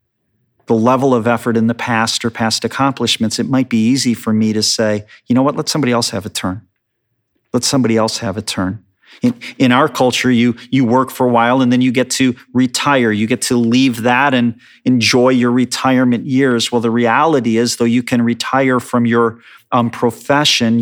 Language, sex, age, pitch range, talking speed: English, male, 40-59, 110-125 Hz, 205 wpm